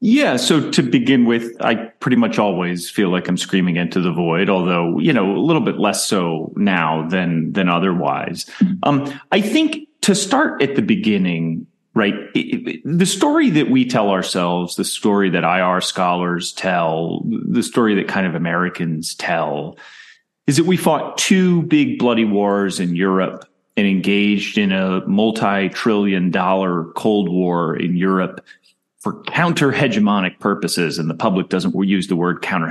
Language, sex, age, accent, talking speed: English, male, 30-49, American, 165 wpm